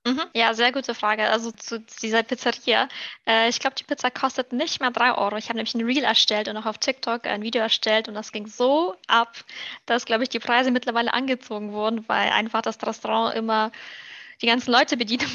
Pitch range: 220-250 Hz